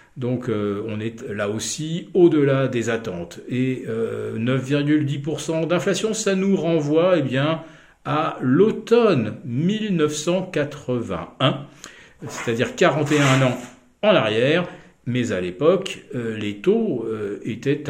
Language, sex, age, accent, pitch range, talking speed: French, male, 50-69, French, 125-160 Hz, 115 wpm